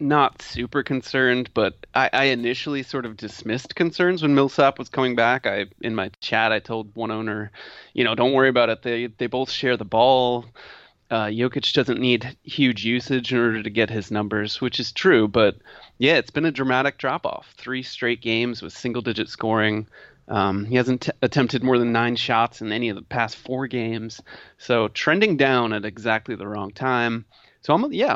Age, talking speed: 30-49, 200 wpm